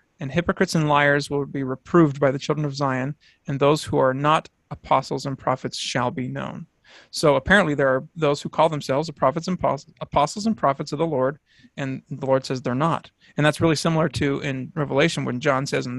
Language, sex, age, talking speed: English, male, 30-49, 220 wpm